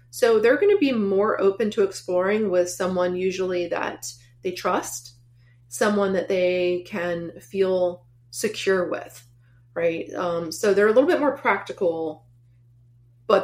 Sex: female